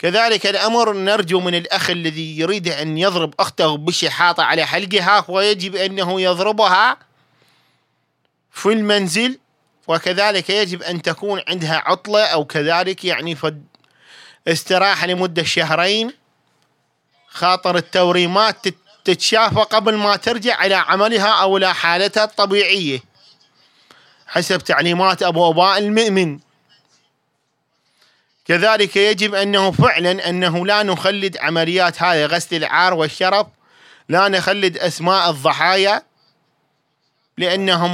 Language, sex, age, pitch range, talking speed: Arabic, male, 30-49, 160-195 Hz, 100 wpm